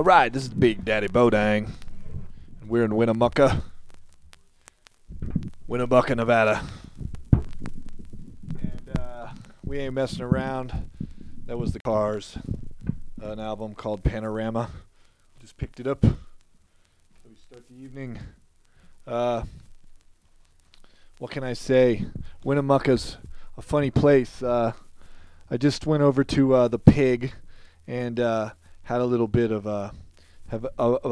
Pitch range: 95-125 Hz